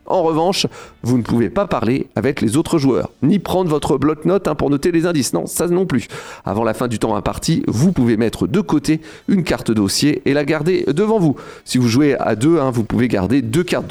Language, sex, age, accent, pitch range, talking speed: French, male, 40-59, French, 125-185 Hz, 225 wpm